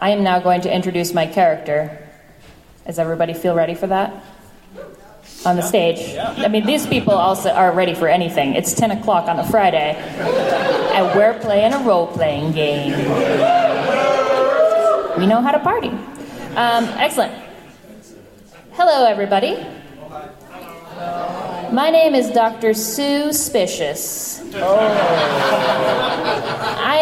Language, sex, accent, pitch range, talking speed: English, female, American, 175-230 Hz, 120 wpm